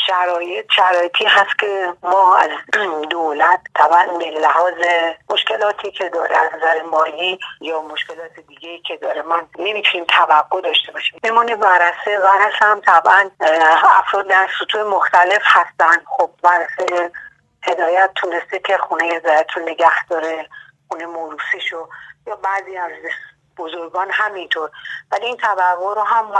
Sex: female